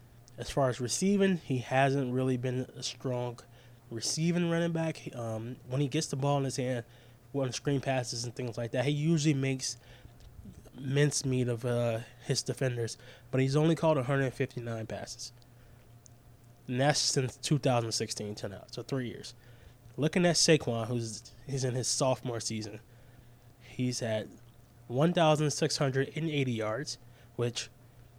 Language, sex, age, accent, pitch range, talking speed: English, male, 20-39, American, 120-135 Hz, 145 wpm